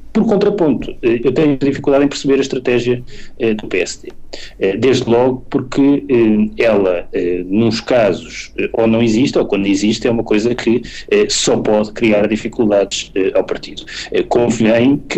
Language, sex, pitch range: Portuguese, male, 115-150 Hz